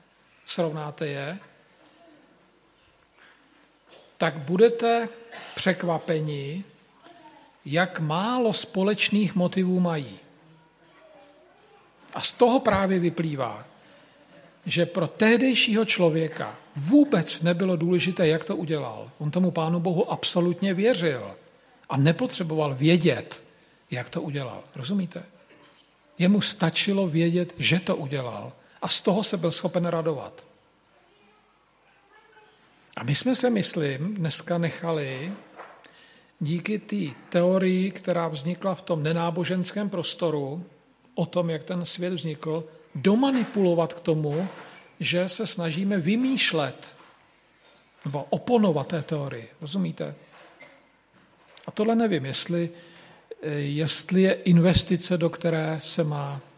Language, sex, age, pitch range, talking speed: Slovak, male, 50-69, 160-195 Hz, 100 wpm